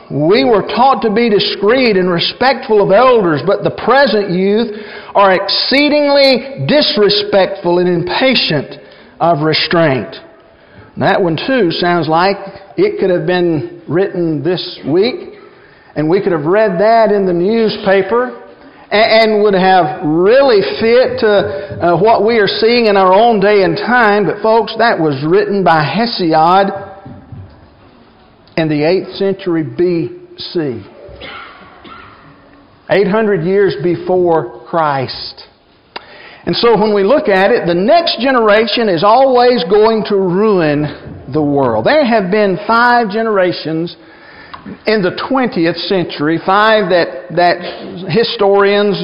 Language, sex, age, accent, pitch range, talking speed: English, male, 50-69, American, 175-225 Hz, 130 wpm